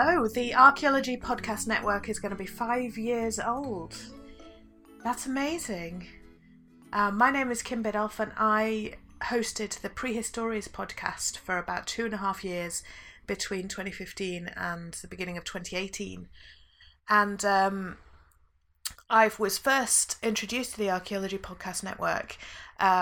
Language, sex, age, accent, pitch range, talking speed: English, female, 30-49, British, 180-220 Hz, 135 wpm